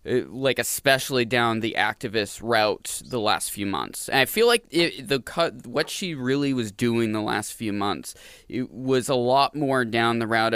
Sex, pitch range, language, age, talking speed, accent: male, 115-145 Hz, English, 20-39, 190 wpm, American